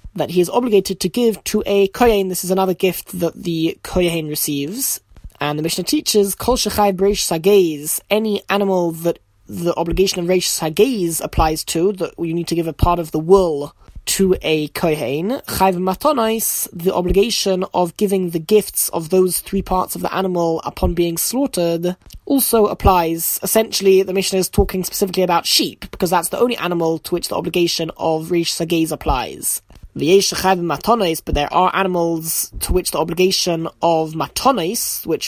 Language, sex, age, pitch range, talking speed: English, male, 20-39, 170-195 Hz, 165 wpm